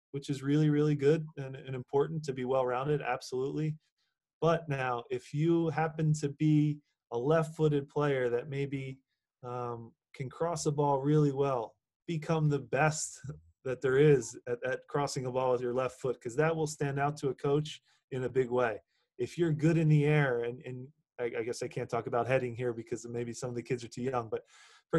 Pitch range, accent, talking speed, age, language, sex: 130-165 Hz, American, 205 wpm, 20-39, English, male